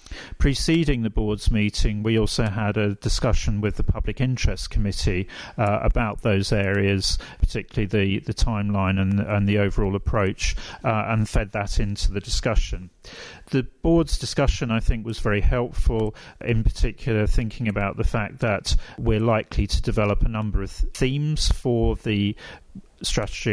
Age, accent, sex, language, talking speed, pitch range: 40-59, British, male, English, 155 wpm, 100-115 Hz